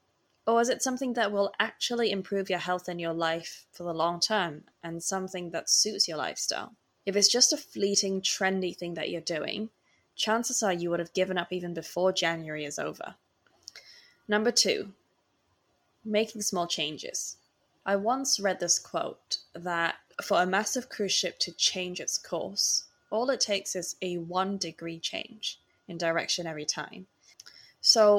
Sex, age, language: female, 10-29, English